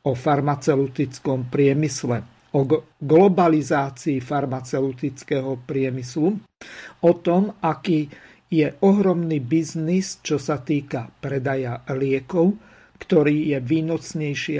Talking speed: 85 wpm